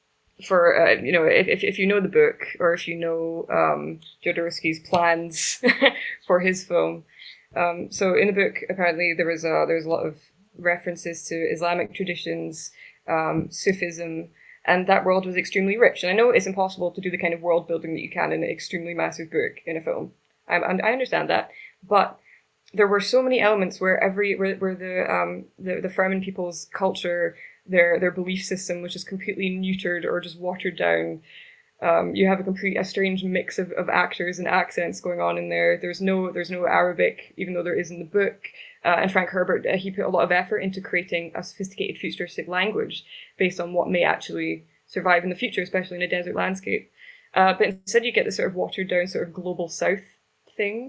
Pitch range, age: 170-195 Hz, 20-39